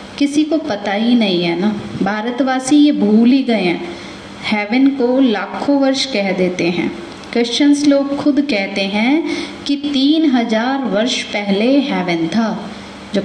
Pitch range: 200-260 Hz